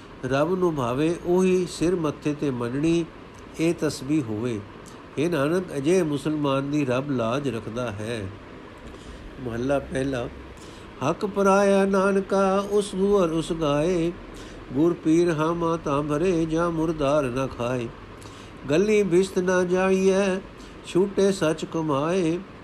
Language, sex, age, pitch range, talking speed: Punjabi, male, 60-79, 130-170 Hz, 115 wpm